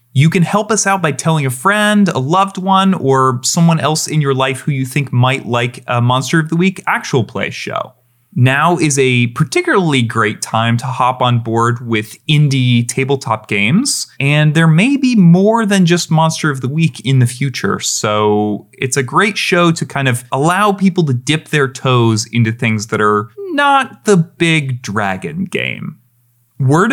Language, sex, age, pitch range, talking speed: English, male, 30-49, 120-170 Hz, 185 wpm